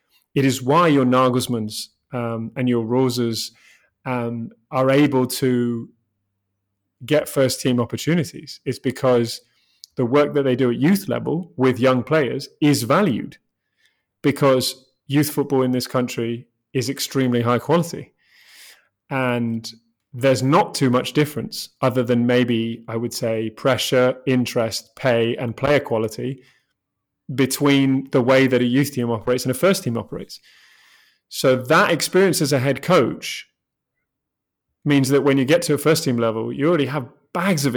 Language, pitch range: English, 125-145 Hz